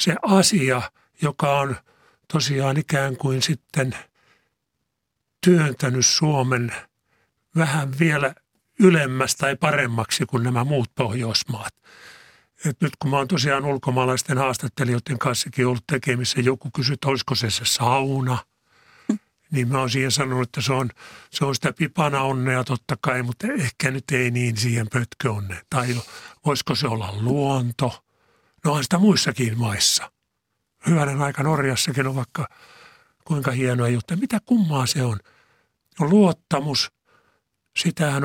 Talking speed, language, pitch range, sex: 135 wpm, Finnish, 125-150 Hz, male